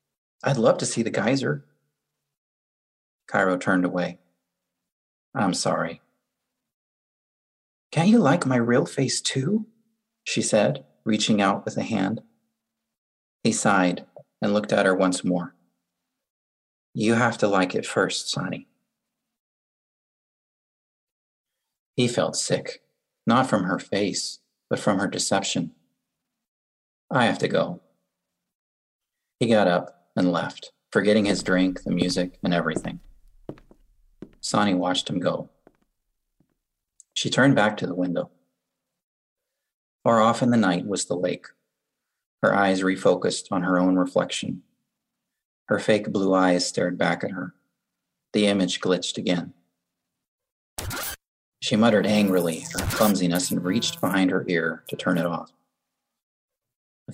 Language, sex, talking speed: English, male, 125 wpm